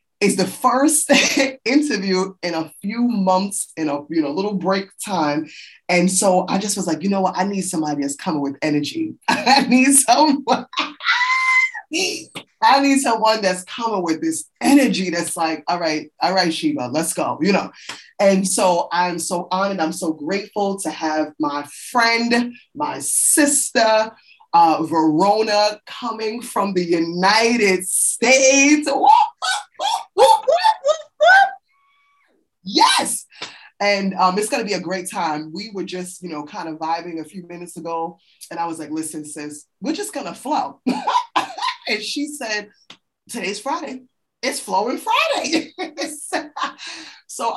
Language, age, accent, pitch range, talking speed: English, 20-39, American, 175-270 Hz, 145 wpm